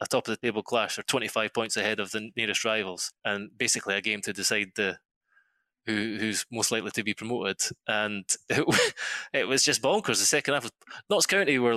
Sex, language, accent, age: male, English, British, 20-39